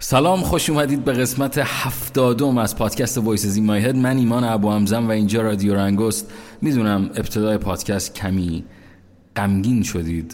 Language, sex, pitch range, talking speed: Persian, male, 95-125 Hz, 150 wpm